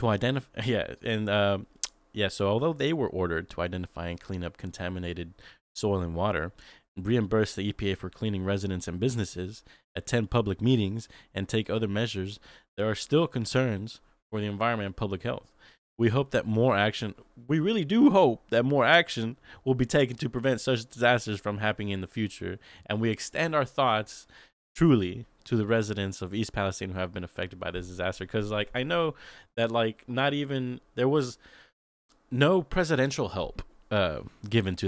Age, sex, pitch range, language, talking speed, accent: 20-39, male, 95-120 Hz, English, 180 wpm, American